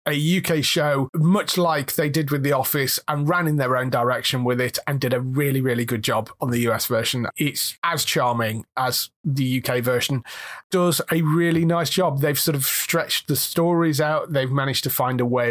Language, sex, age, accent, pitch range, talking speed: English, male, 30-49, British, 130-170 Hz, 210 wpm